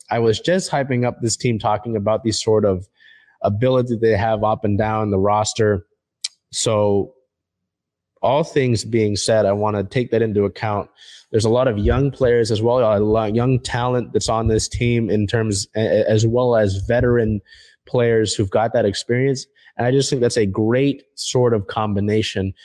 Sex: male